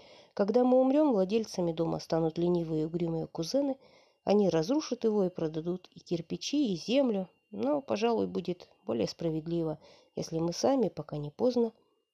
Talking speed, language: 150 wpm, Russian